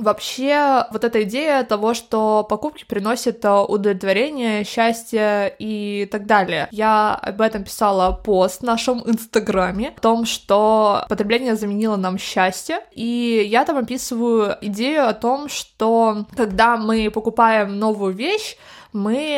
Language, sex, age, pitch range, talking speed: Russian, female, 20-39, 205-250 Hz, 130 wpm